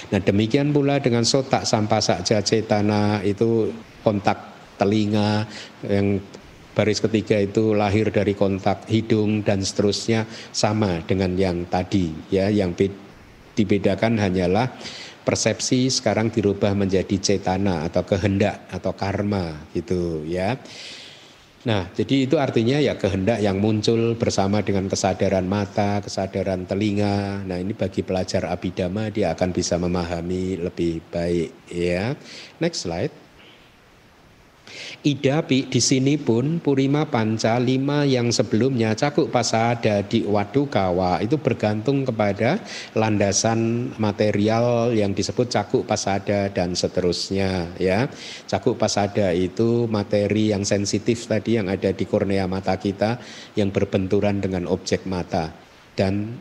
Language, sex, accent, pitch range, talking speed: Indonesian, male, native, 95-115 Hz, 120 wpm